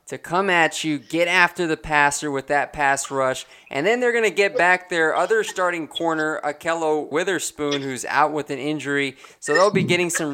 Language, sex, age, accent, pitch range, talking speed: English, male, 20-39, American, 140-160 Hz, 205 wpm